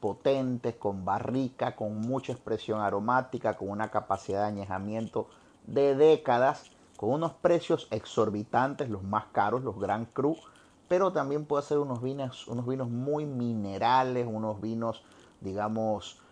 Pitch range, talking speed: 105-130 Hz, 135 wpm